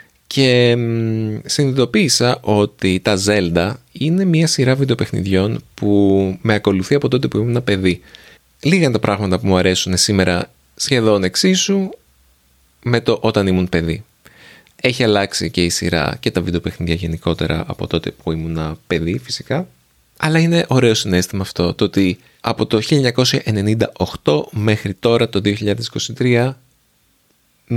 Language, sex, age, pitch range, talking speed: Greek, male, 20-39, 85-120 Hz, 130 wpm